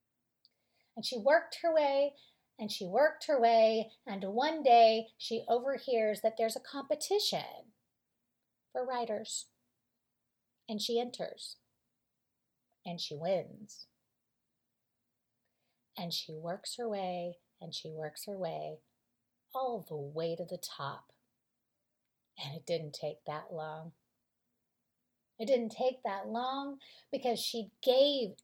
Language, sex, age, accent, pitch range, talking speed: English, female, 30-49, American, 175-265 Hz, 120 wpm